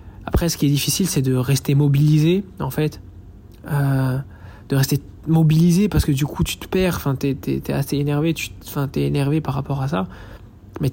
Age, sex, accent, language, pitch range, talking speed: 20-39, male, French, French, 105-145 Hz, 205 wpm